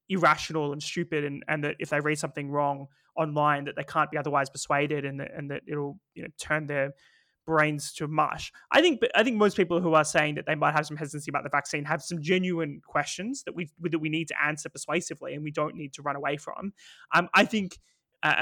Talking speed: 240 wpm